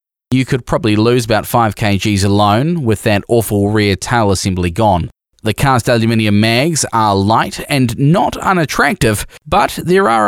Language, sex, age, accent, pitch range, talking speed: English, male, 10-29, Australian, 110-150 Hz, 160 wpm